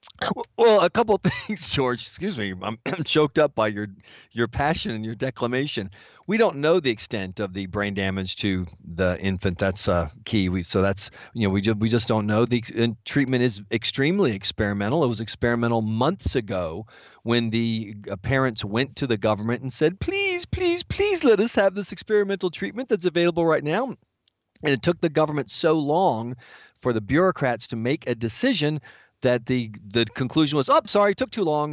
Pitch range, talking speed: 110-175 Hz, 195 wpm